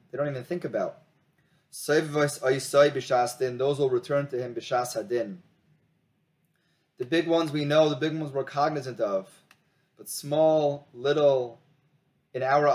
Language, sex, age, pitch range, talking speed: English, male, 30-49, 125-155 Hz, 120 wpm